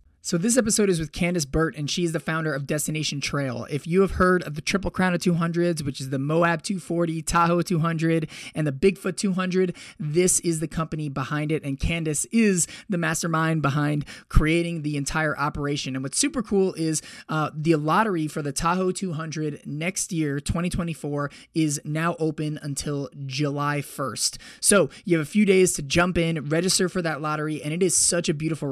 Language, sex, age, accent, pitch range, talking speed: English, male, 20-39, American, 145-175 Hz, 190 wpm